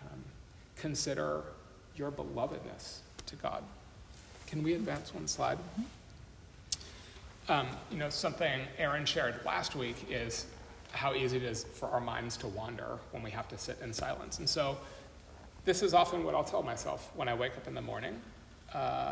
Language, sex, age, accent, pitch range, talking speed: English, male, 40-59, American, 95-145 Hz, 165 wpm